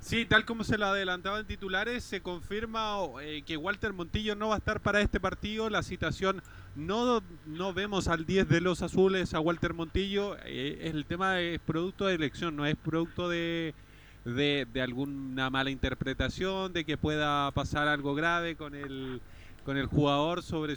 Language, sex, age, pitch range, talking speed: Spanish, male, 30-49, 145-180 Hz, 175 wpm